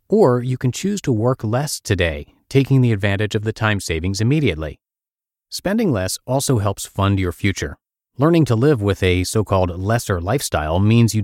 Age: 30-49